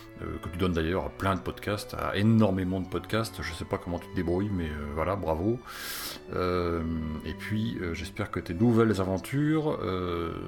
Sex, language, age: male, French, 40-59